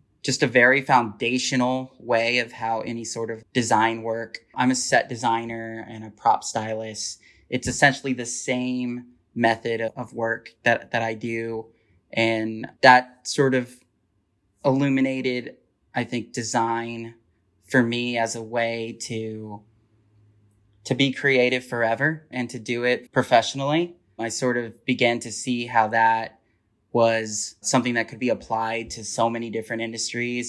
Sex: male